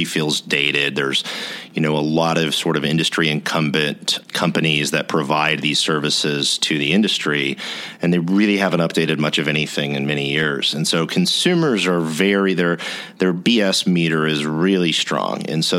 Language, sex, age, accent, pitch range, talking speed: English, male, 40-59, American, 75-85 Hz, 180 wpm